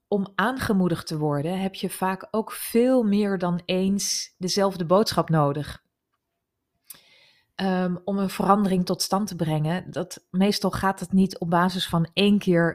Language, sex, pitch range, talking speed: Dutch, female, 170-195 Hz, 155 wpm